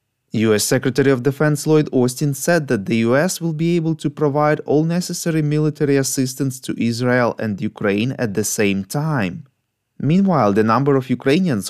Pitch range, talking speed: 115-155 Hz, 165 wpm